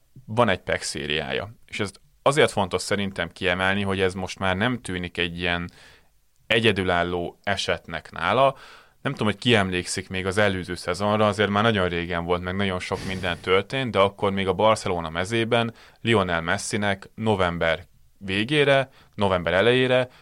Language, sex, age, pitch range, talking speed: Hungarian, male, 30-49, 90-105 Hz, 150 wpm